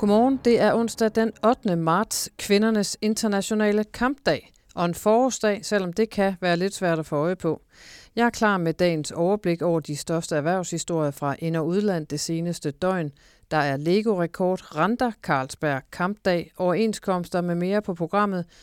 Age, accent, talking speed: 40-59, native, 165 wpm